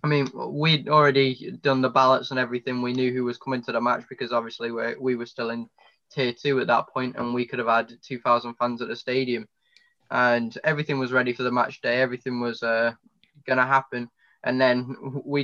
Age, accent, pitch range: 10-29, British, 120-135 Hz